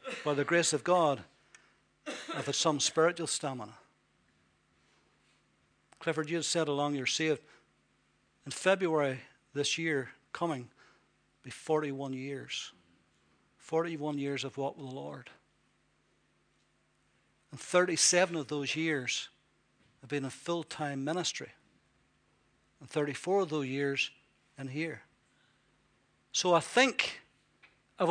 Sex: male